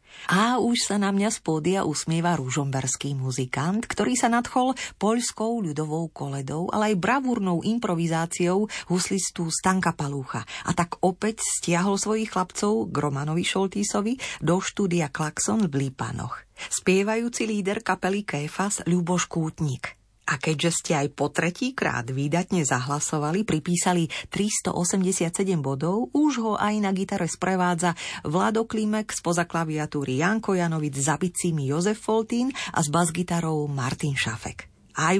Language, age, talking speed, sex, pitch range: Slovak, 40-59, 130 wpm, female, 155-210 Hz